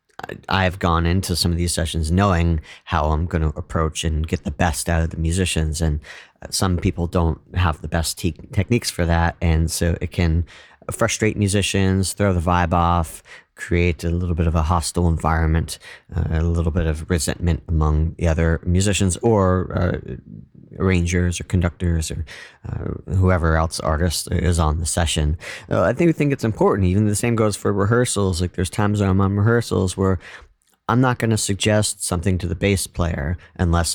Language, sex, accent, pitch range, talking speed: English, male, American, 80-95 Hz, 185 wpm